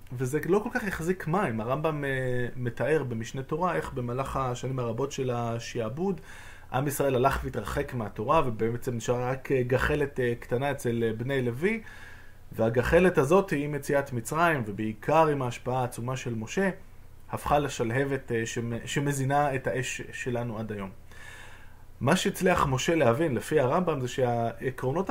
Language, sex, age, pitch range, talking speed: Hebrew, male, 20-39, 115-145 Hz, 135 wpm